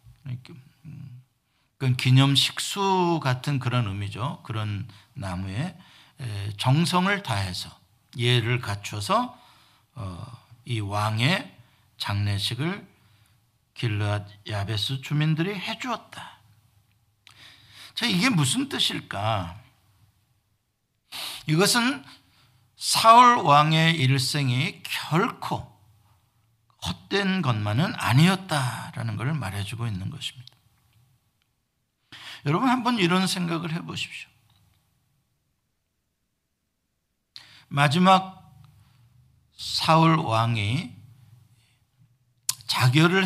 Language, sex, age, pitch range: Korean, male, 50-69, 105-150 Hz